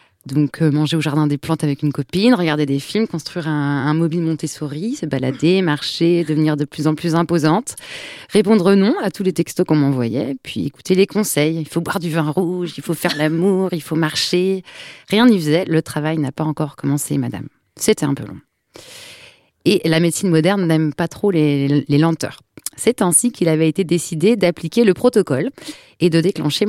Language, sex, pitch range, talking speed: French, female, 155-210 Hz, 200 wpm